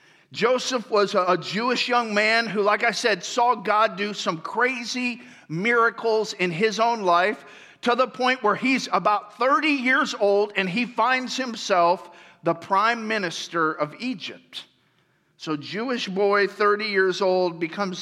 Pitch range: 180-240 Hz